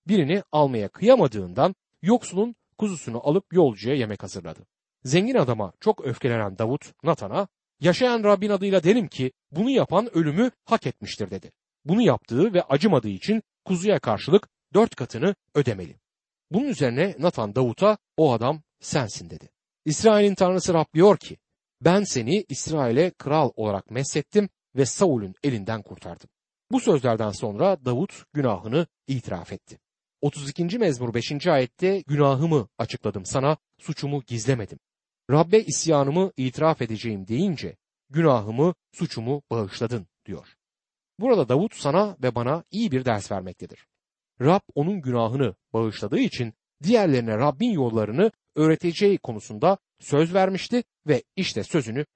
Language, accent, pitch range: Turkish, native, 120-190 Hz